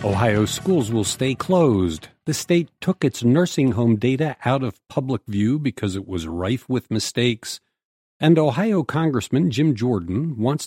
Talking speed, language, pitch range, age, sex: 155 wpm, English, 105-145 Hz, 50-69, male